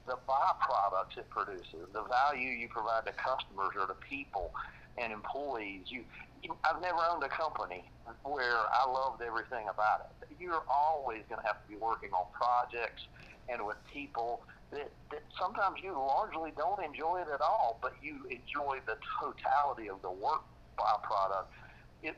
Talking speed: 165 wpm